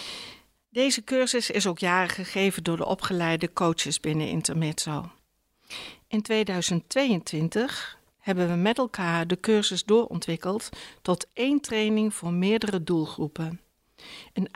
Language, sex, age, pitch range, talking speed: Dutch, female, 60-79, 175-215 Hz, 115 wpm